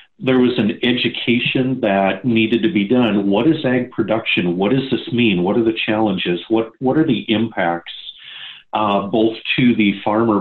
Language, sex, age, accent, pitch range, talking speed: English, male, 40-59, American, 105-125 Hz, 180 wpm